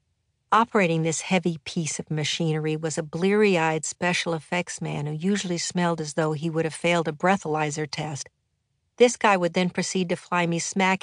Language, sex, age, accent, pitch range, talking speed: English, female, 50-69, American, 160-190 Hz, 180 wpm